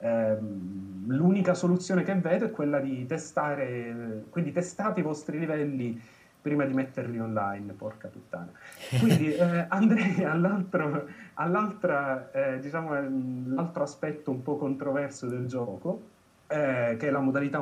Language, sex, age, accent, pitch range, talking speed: Italian, male, 30-49, native, 120-155 Hz, 125 wpm